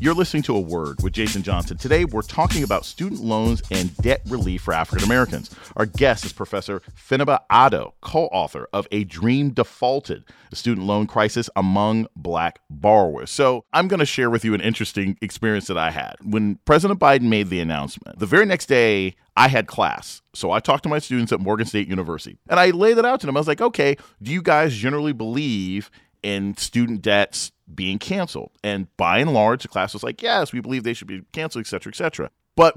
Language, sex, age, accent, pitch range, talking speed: English, male, 40-59, American, 100-145 Hz, 205 wpm